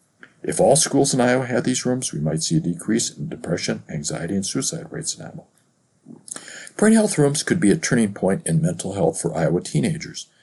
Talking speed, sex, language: 200 wpm, male, English